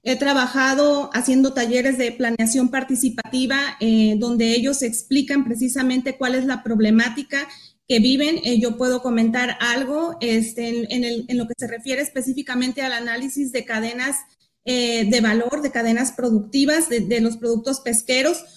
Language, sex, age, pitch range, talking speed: Spanish, female, 30-49, 240-270 Hz, 155 wpm